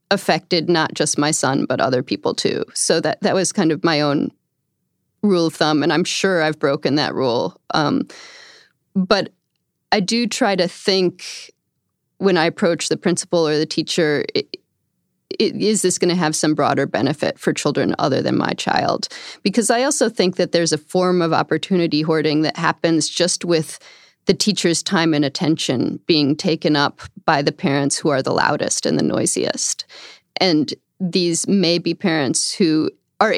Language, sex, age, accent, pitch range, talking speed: English, female, 30-49, American, 155-190 Hz, 175 wpm